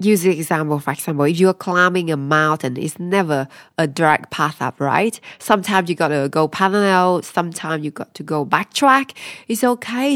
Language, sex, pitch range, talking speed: English, female, 160-205 Hz, 185 wpm